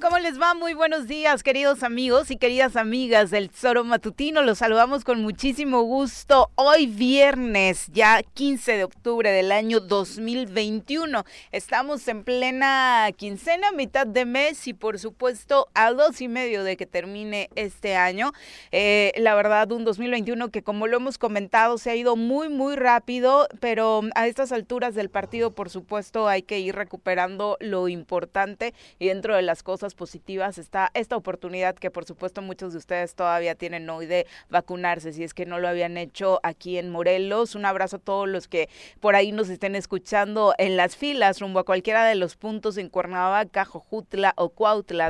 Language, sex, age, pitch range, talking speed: Spanish, female, 30-49, 190-245 Hz, 175 wpm